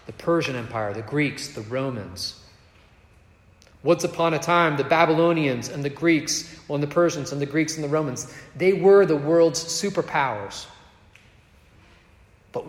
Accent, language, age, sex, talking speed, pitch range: American, English, 30-49, male, 150 wpm, 105-155 Hz